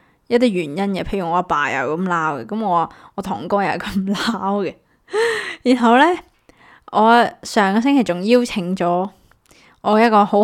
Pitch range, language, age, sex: 180-225 Hz, Chinese, 20-39, female